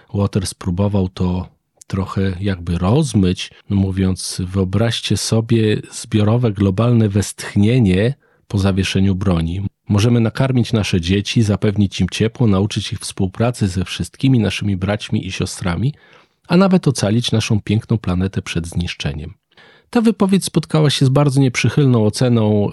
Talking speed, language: 125 wpm, Polish